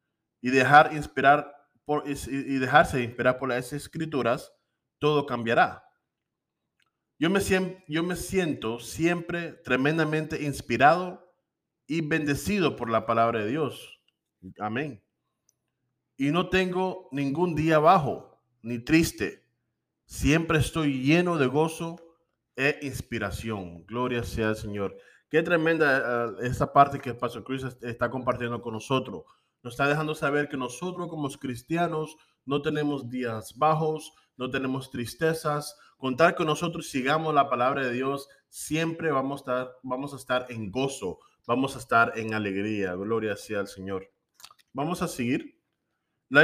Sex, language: male, English